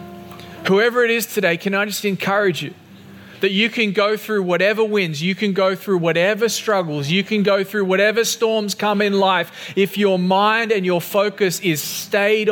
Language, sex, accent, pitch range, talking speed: English, male, Australian, 160-210 Hz, 185 wpm